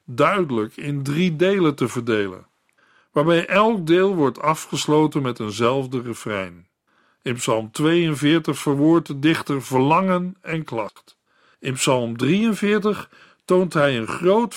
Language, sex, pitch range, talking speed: Dutch, male, 135-175 Hz, 125 wpm